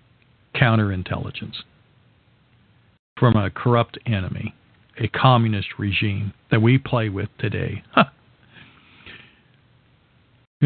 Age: 50-69